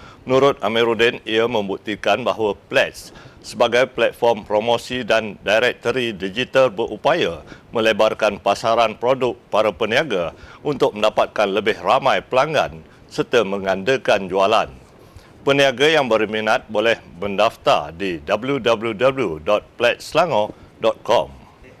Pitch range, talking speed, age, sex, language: 110-130 Hz, 90 wpm, 60-79, male, Malay